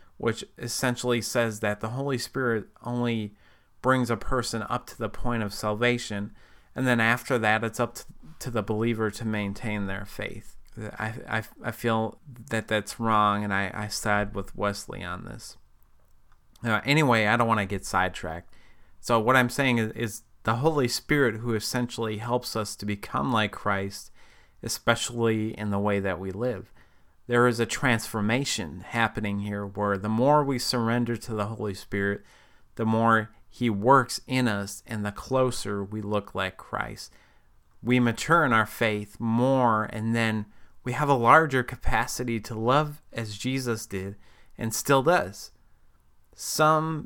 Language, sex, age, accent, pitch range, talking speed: English, male, 30-49, American, 105-120 Hz, 160 wpm